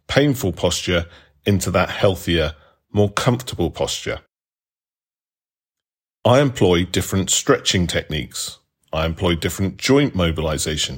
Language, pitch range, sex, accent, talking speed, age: English, 85-110 Hz, male, British, 100 wpm, 40-59